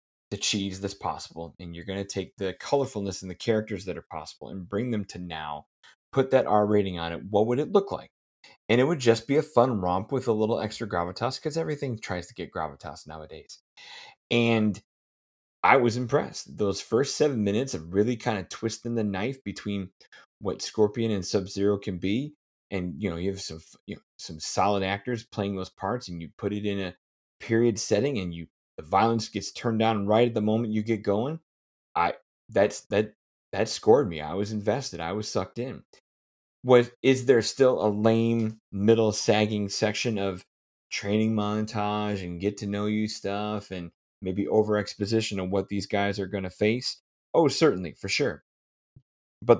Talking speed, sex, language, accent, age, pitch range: 185 wpm, male, English, American, 30-49, 95-115 Hz